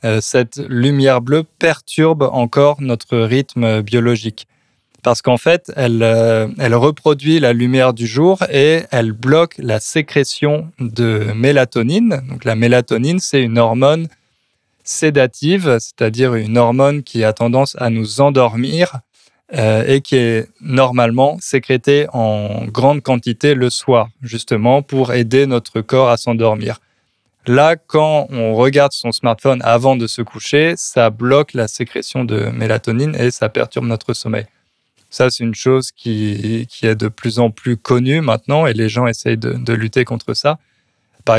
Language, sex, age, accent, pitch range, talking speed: French, male, 20-39, French, 115-140 Hz, 150 wpm